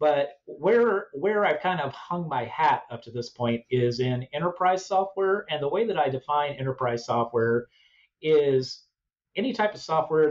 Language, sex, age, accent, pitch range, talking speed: English, male, 40-59, American, 125-160 Hz, 175 wpm